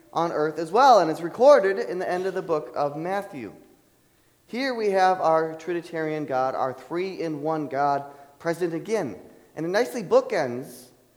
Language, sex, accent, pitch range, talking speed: English, male, American, 140-195 Hz, 160 wpm